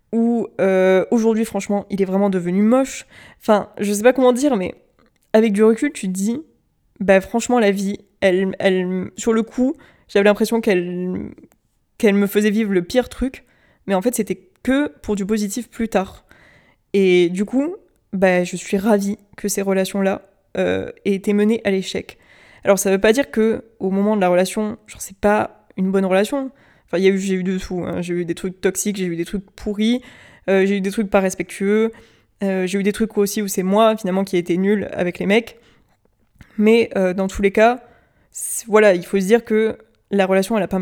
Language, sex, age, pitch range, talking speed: French, female, 20-39, 190-220 Hz, 210 wpm